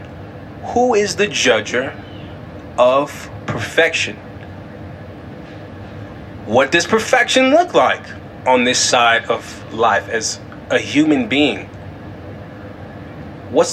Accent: American